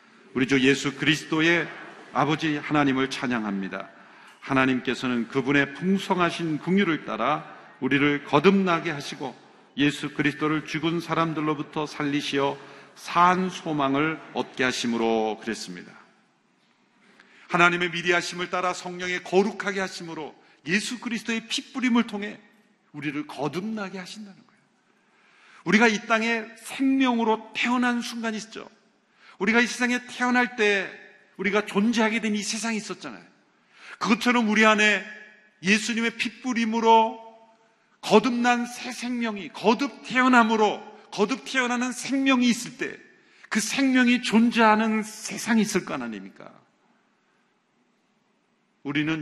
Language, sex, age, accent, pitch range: Korean, male, 40-59, native, 150-230 Hz